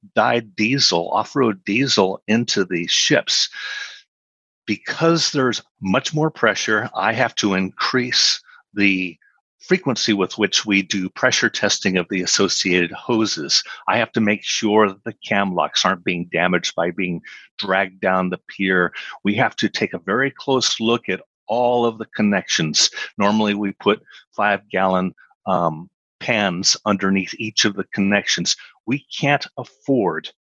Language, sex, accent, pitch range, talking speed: English, male, American, 95-120 Hz, 145 wpm